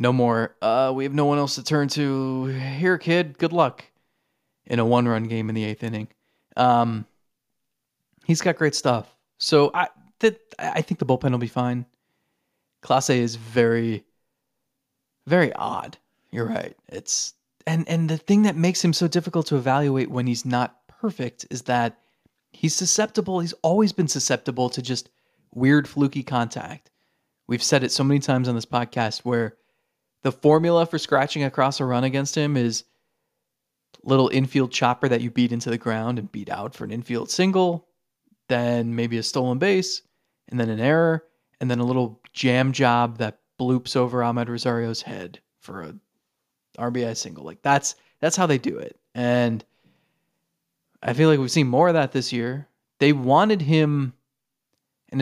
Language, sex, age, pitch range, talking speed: English, male, 30-49, 120-155 Hz, 170 wpm